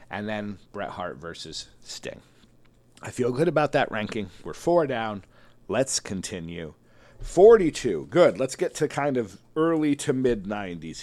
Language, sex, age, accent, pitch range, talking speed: English, male, 50-69, American, 95-140 Hz, 145 wpm